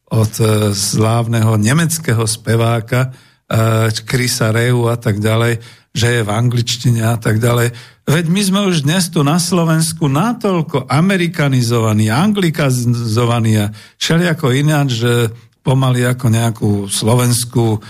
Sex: male